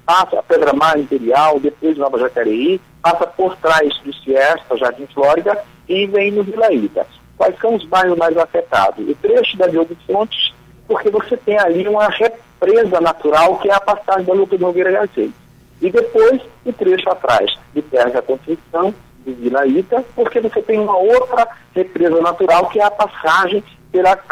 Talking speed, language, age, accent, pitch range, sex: 175 wpm, Portuguese, 50-69, Brazilian, 150-210 Hz, male